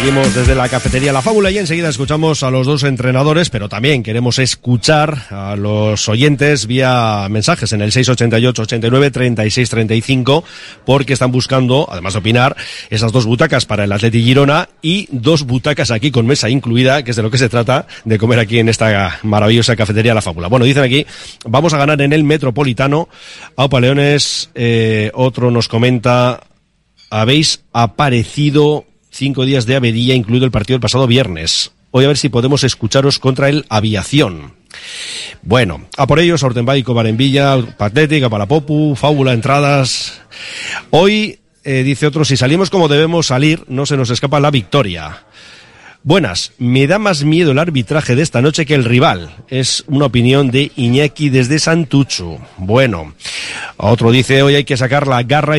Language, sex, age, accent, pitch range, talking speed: Spanish, male, 40-59, Spanish, 115-145 Hz, 165 wpm